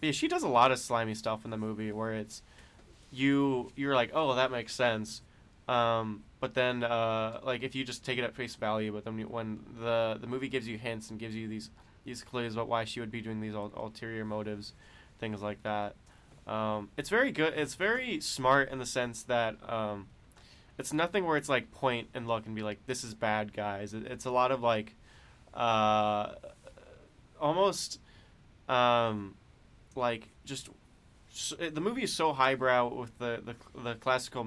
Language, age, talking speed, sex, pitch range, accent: English, 20-39, 190 wpm, male, 110-125 Hz, American